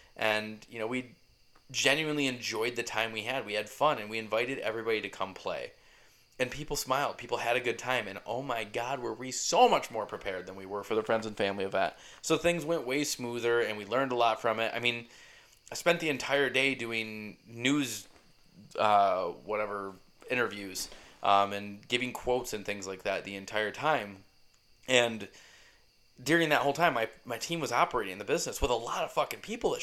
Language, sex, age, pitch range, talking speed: English, male, 20-39, 105-140 Hz, 205 wpm